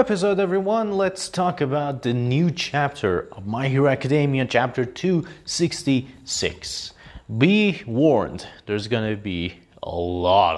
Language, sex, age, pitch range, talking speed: English, male, 30-49, 110-160 Hz, 125 wpm